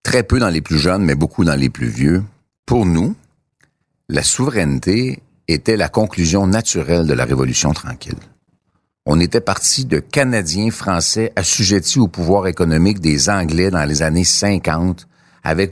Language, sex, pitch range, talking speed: French, male, 85-110 Hz, 155 wpm